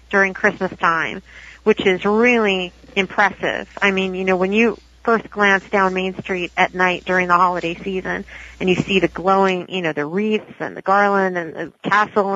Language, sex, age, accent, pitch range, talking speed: English, female, 30-49, American, 170-195 Hz, 190 wpm